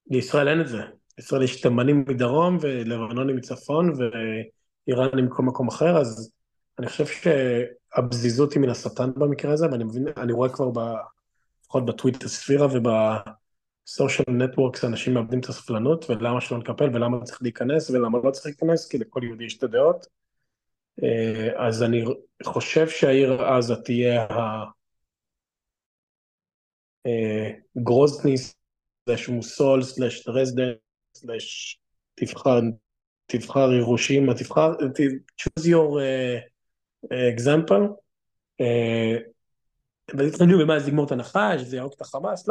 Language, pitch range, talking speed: Hebrew, 120-140 Hz, 120 wpm